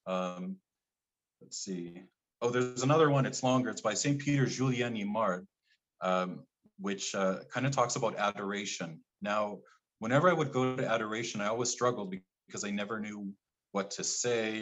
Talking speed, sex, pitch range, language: 170 wpm, male, 95-130 Hz, English